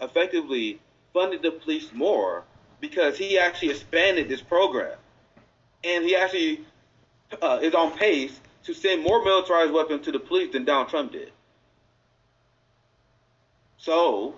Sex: male